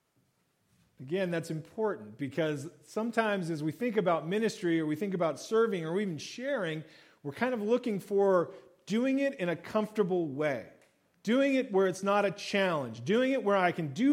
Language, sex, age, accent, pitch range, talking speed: English, male, 40-59, American, 155-230 Hz, 180 wpm